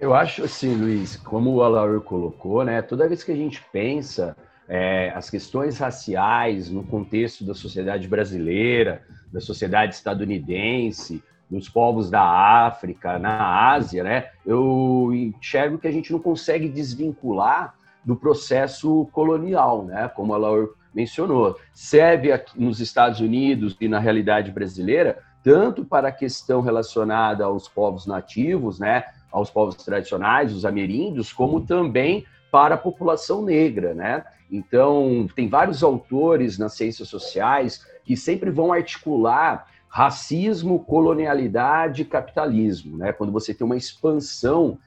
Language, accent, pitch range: Portuguese, Brazilian, 105-150 Hz